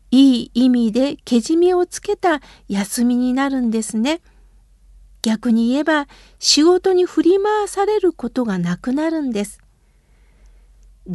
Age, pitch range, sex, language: 50-69, 220-345 Hz, female, Japanese